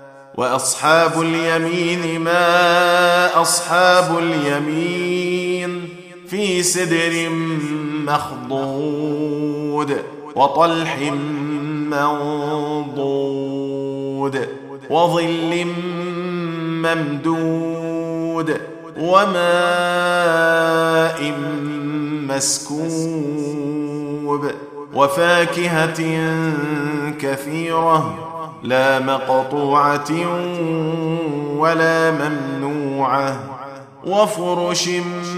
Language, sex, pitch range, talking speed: Arabic, male, 145-175 Hz, 35 wpm